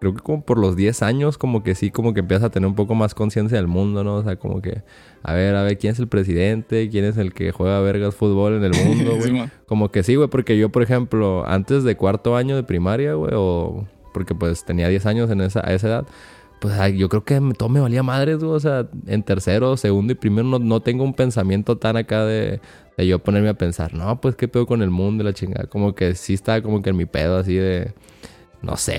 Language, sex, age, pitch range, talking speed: English, male, 20-39, 95-120 Hz, 255 wpm